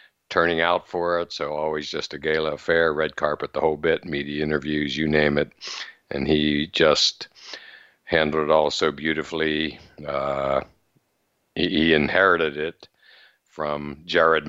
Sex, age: male, 60-79